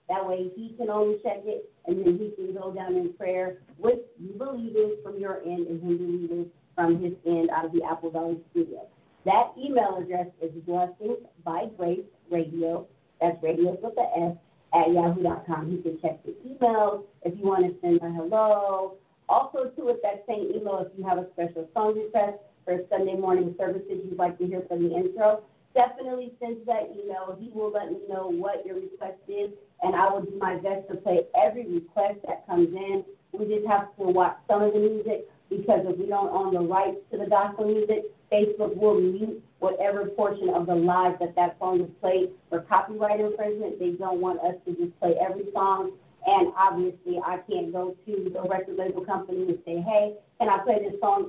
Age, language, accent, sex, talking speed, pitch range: 40-59, English, American, female, 200 wpm, 175-210 Hz